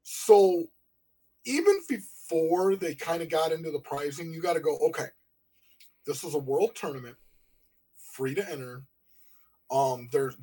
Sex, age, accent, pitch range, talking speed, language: male, 20-39, American, 135-190 Hz, 145 wpm, English